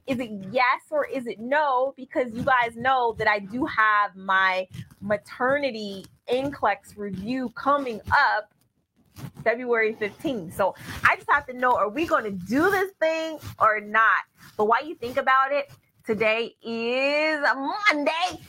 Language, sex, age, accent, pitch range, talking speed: English, female, 20-39, American, 200-270 Hz, 155 wpm